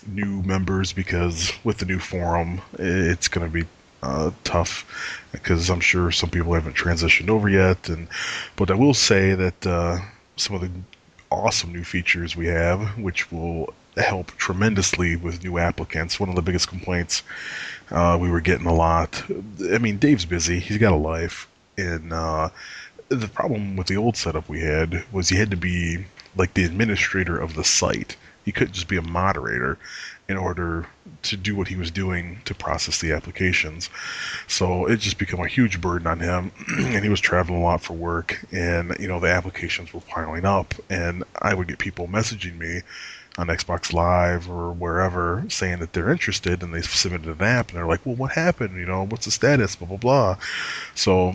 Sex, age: male, 30-49